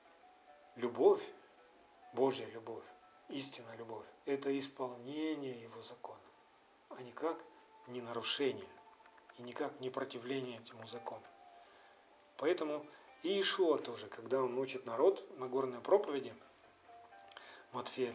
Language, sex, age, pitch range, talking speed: Russian, male, 40-59, 120-170 Hz, 105 wpm